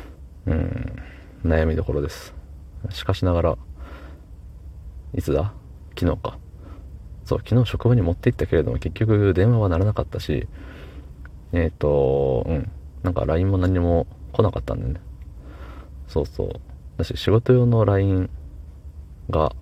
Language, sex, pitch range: Japanese, male, 70-90 Hz